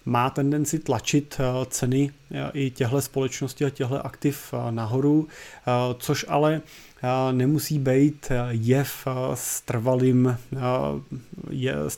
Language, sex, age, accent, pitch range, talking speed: Czech, male, 30-49, native, 125-140 Hz, 85 wpm